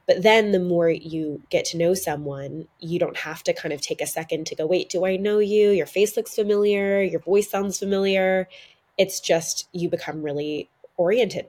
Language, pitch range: English, 150-190 Hz